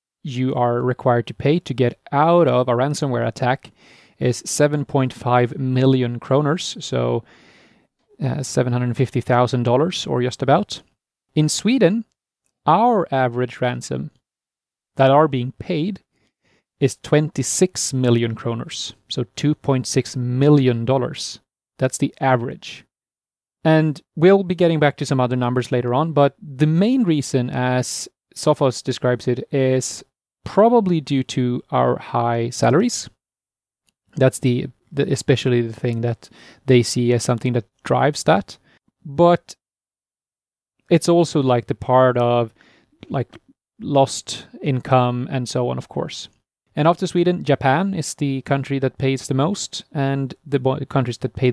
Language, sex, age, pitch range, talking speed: English, male, 30-49, 125-150 Hz, 130 wpm